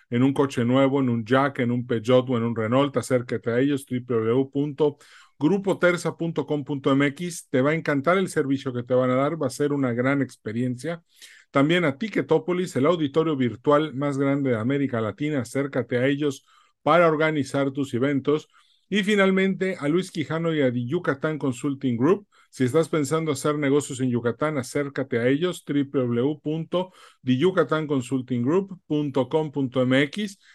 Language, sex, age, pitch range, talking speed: Spanish, male, 40-59, 120-155 Hz, 145 wpm